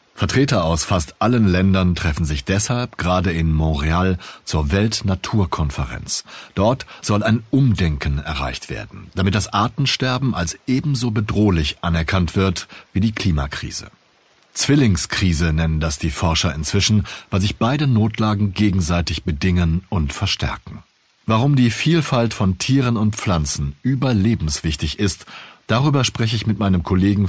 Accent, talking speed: German, 130 wpm